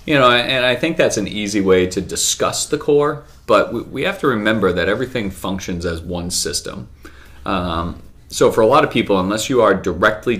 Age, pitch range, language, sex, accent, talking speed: 30-49, 85-105 Hz, English, male, American, 200 wpm